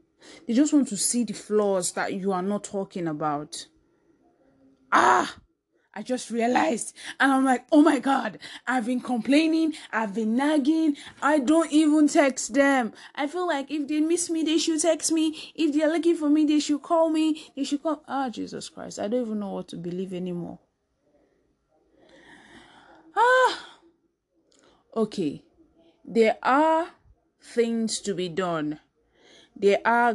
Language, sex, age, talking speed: English, female, 20-39, 155 wpm